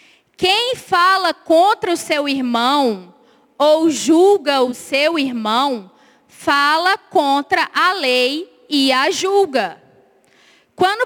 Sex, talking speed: female, 105 wpm